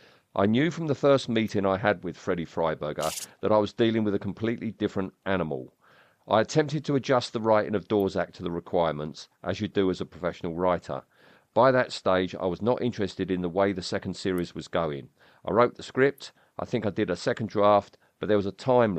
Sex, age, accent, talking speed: male, 50-69, British, 220 wpm